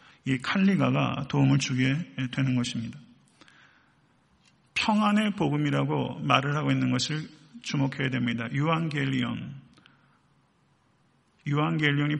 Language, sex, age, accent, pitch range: Korean, male, 40-59, native, 135-170 Hz